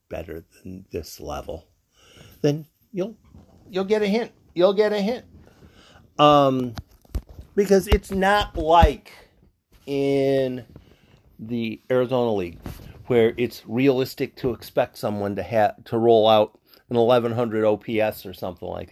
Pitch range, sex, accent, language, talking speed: 105-145 Hz, male, American, English, 125 wpm